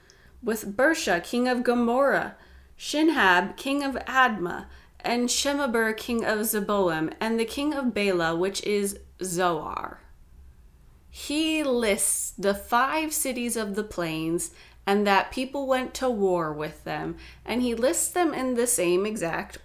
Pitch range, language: 170-240 Hz, English